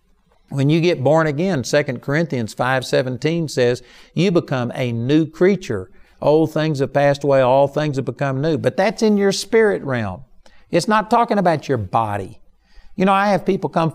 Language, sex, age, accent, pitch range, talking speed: English, male, 60-79, American, 120-165 Hz, 185 wpm